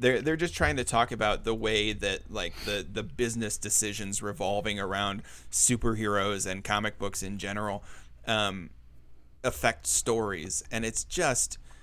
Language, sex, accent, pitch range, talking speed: English, male, American, 100-120 Hz, 145 wpm